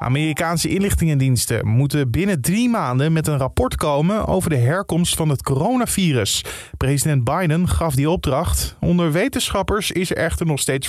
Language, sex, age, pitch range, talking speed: Dutch, male, 20-39, 125-165 Hz, 155 wpm